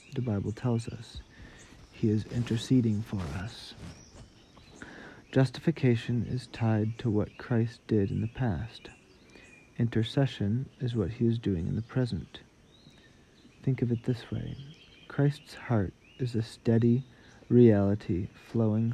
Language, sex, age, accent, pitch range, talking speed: English, male, 40-59, American, 105-120 Hz, 125 wpm